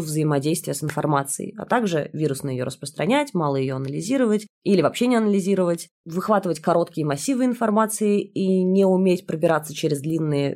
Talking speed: 140 wpm